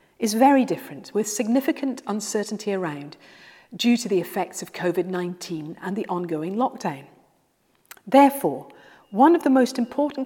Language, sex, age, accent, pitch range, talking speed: English, female, 40-59, British, 185-270 Hz, 135 wpm